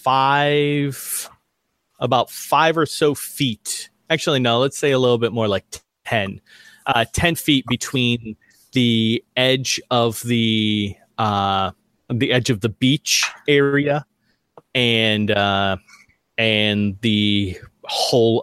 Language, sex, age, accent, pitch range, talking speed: English, male, 30-49, American, 105-130 Hz, 115 wpm